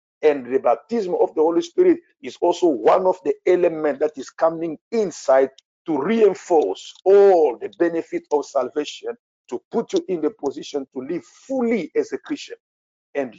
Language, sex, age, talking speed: English, male, 50-69, 165 wpm